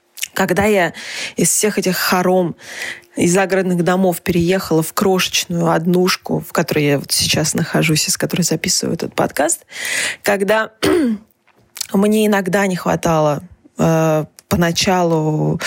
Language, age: Russian, 20-39